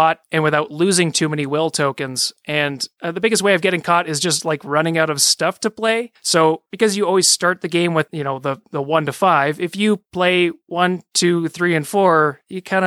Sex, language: male, English